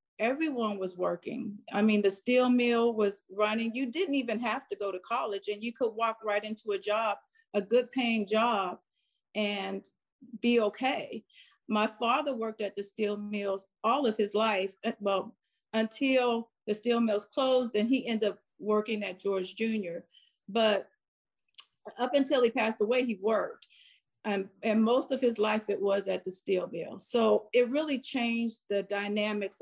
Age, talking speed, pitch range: 50-69, 170 wpm, 200-240 Hz